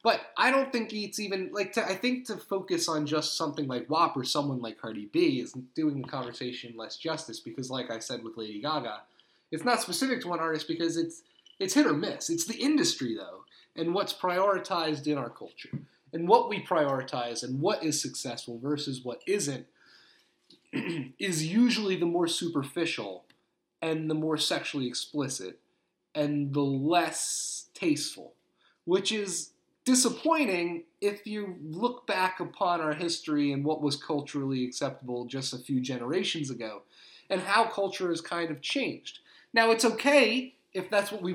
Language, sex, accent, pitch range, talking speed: English, male, American, 145-210 Hz, 170 wpm